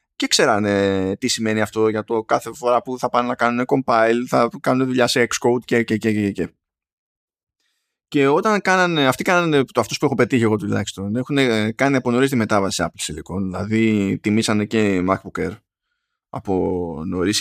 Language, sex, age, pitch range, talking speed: Greek, male, 20-39, 100-140 Hz, 185 wpm